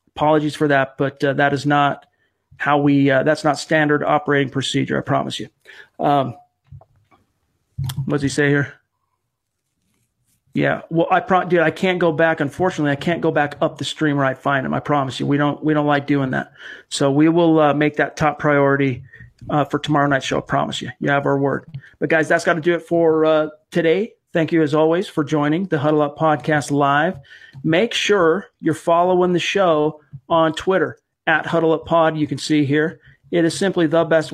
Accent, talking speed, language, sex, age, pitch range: American, 205 wpm, English, male, 40-59, 145-160 Hz